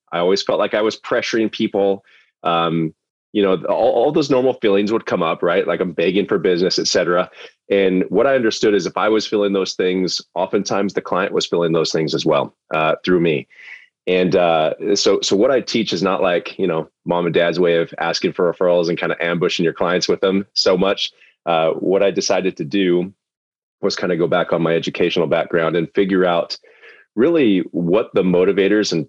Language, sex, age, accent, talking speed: English, male, 30-49, American, 215 wpm